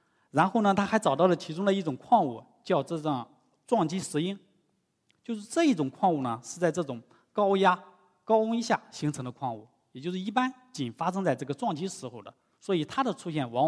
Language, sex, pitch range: Chinese, male, 140-215 Hz